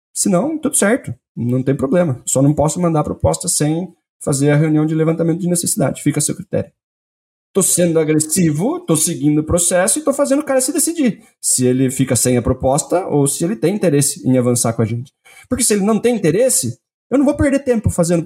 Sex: male